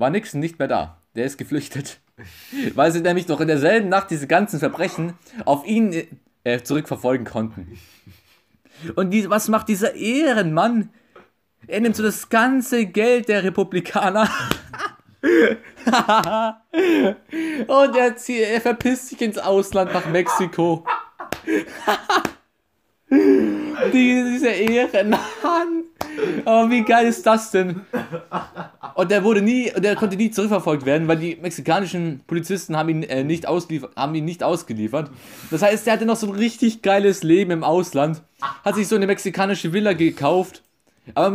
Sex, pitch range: male, 150-225 Hz